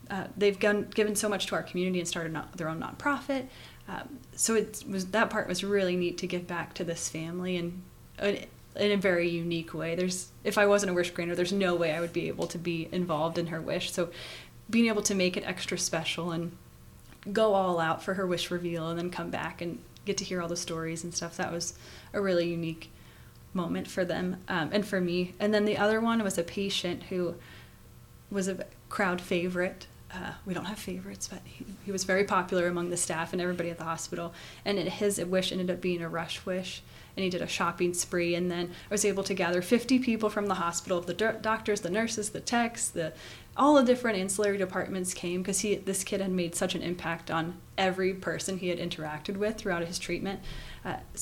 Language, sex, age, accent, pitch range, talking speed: English, female, 20-39, American, 175-205 Hz, 220 wpm